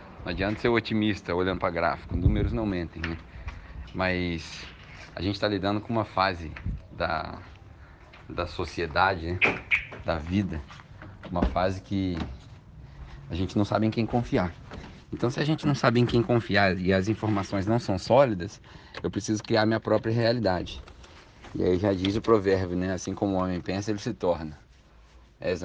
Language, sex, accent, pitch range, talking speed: English, male, Brazilian, 85-110 Hz, 170 wpm